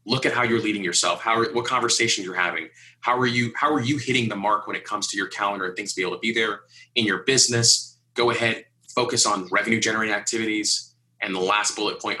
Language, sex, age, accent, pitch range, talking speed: English, male, 30-49, American, 100-130 Hz, 245 wpm